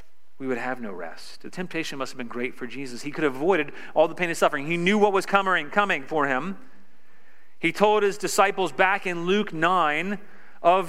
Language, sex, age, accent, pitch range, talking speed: English, male, 40-59, American, 165-240 Hz, 215 wpm